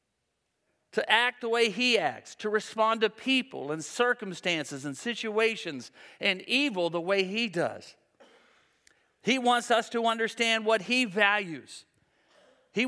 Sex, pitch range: male, 170-225 Hz